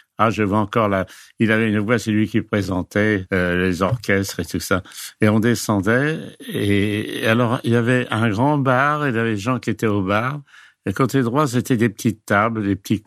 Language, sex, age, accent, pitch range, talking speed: French, male, 60-79, French, 95-120 Hz, 230 wpm